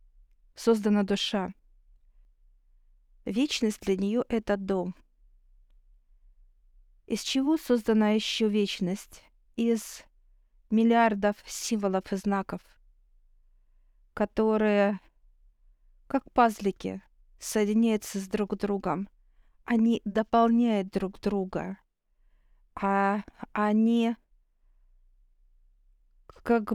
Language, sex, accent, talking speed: Russian, female, native, 70 wpm